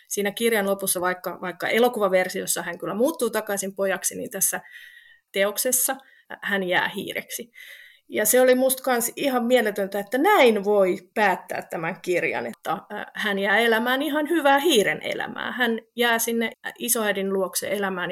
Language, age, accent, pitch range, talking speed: Finnish, 30-49, native, 190-235 Hz, 145 wpm